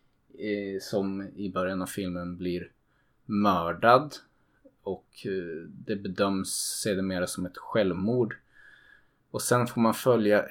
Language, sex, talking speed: Swedish, male, 115 wpm